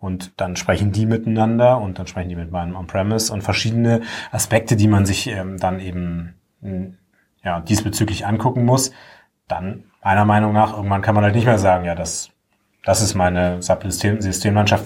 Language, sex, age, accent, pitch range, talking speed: German, male, 30-49, German, 95-120 Hz, 165 wpm